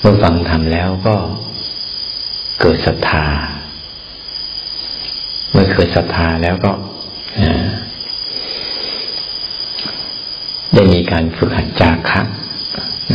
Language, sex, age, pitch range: Thai, male, 60-79, 80-95 Hz